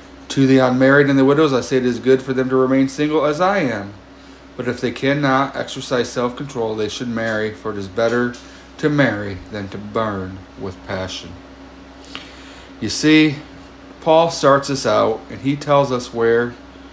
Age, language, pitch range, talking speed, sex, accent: 30-49, English, 110-130 Hz, 175 wpm, male, American